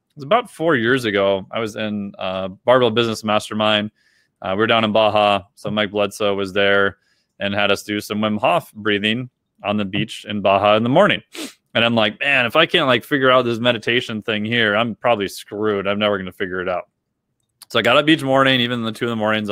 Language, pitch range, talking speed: English, 105-120 Hz, 230 wpm